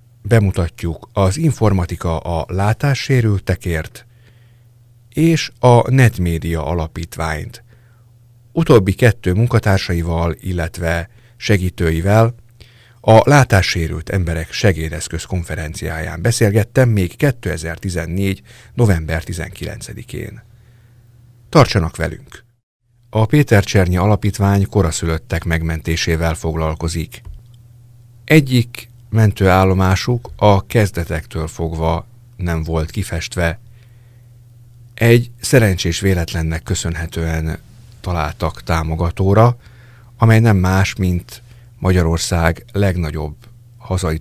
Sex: male